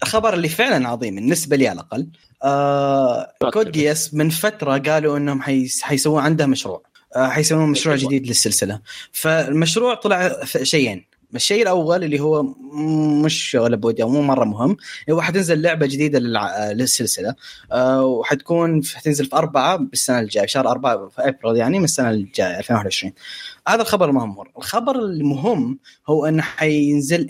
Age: 20-39